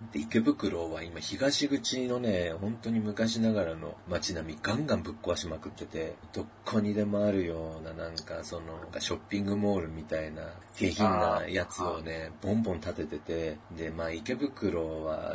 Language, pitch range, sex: Japanese, 80-105 Hz, male